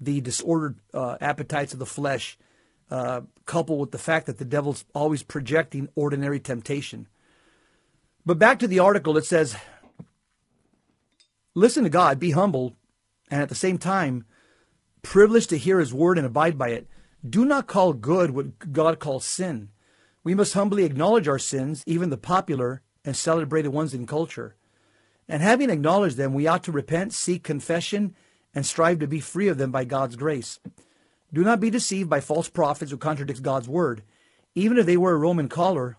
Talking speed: 175 wpm